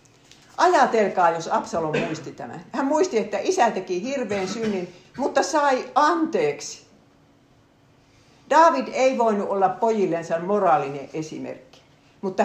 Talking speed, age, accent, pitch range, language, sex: 110 wpm, 60-79, native, 155-225 Hz, Finnish, female